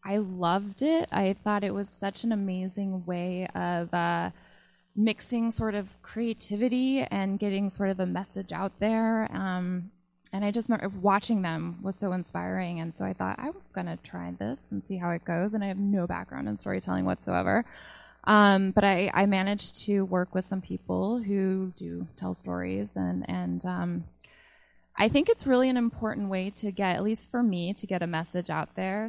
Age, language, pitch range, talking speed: 20-39, English, 170-205 Hz, 190 wpm